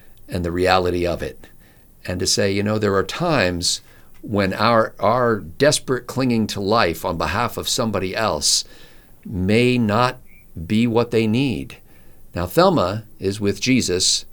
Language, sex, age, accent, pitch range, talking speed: English, male, 50-69, American, 80-110 Hz, 150 wpm